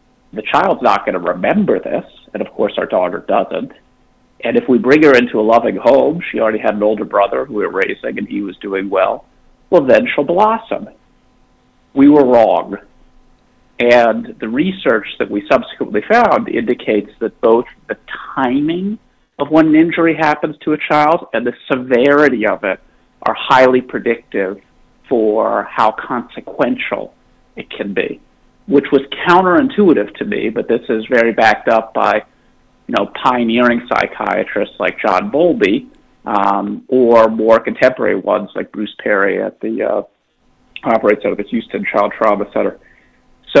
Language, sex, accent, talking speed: English, male, American, 160 wpm